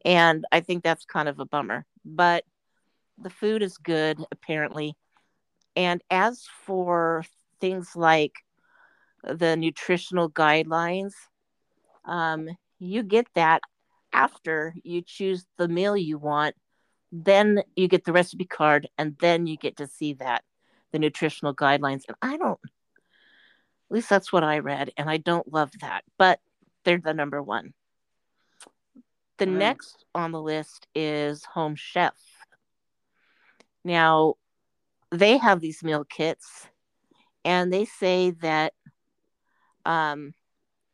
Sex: female